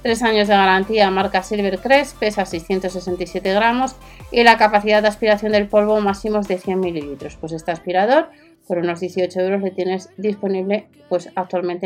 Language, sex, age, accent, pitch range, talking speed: Spanish, female, 30-49, Spanish, 185-230 Hz, 155 wpm